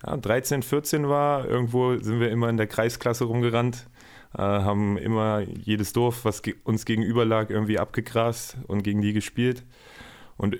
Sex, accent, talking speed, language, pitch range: male, German, 165 wpm, German, 100-120 Hz